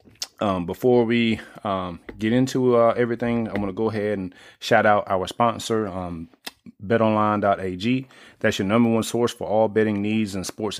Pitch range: 95-110 Hz